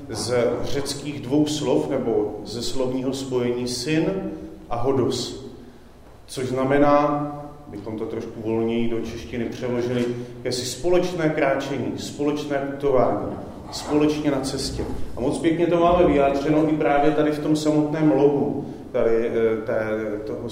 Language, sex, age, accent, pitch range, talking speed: Czech, male, 40-59, native, 120-145 Hz, 125 wpm